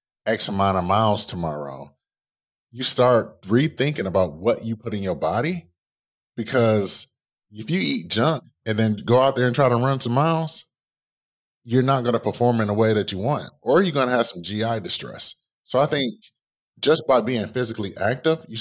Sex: male